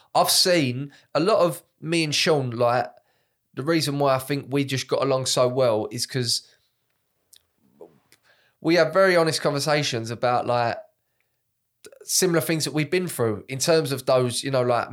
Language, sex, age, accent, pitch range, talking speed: English, male, 20-39, British, 120-145 Hz, 170 wpm